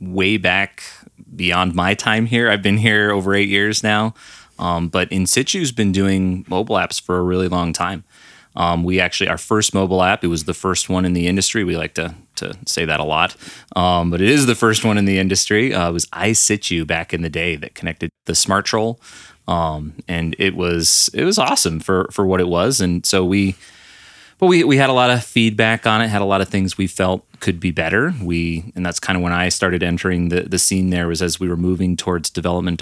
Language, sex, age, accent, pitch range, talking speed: English, male, 30-49, American, 85-95 Hz, 230 wpm